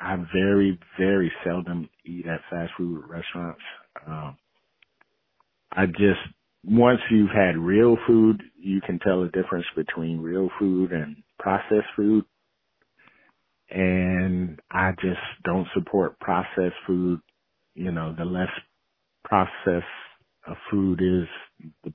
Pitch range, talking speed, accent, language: 85-95 Hz, 120 wpm, American, English